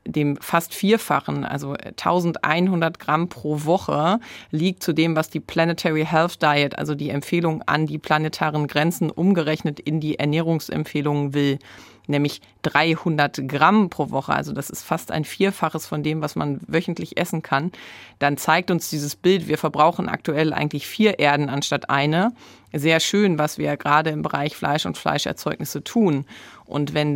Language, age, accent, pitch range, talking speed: German, 30-49, German, 145-175 Hz, 160 wpm